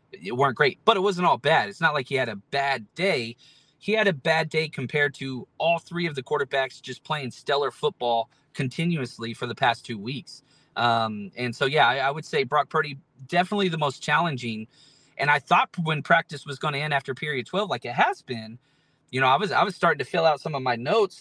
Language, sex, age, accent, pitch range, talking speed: English, male, 30-49, American, 130-170 Hz, 230 wpm